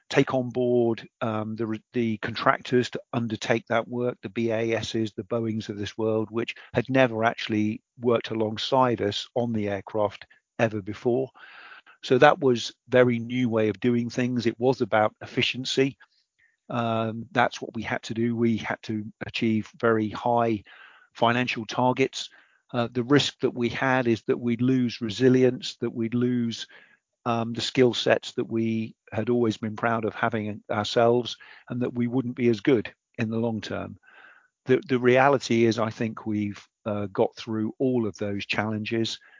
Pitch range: 110-120 Hz